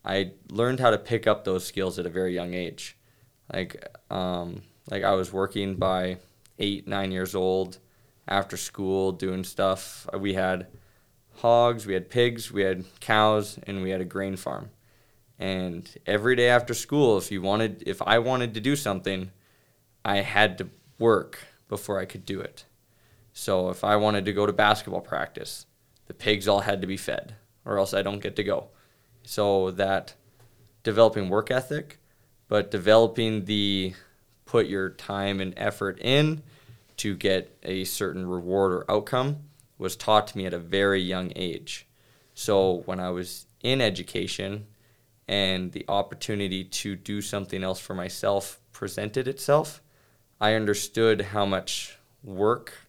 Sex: male